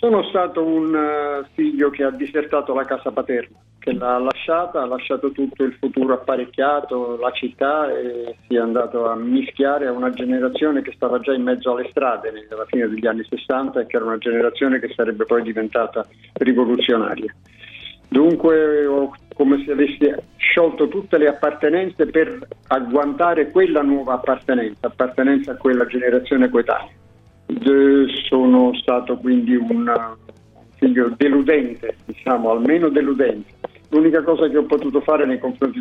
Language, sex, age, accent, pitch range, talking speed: Italian, male, 50-69, native, 115-145 Hz, 145 wpm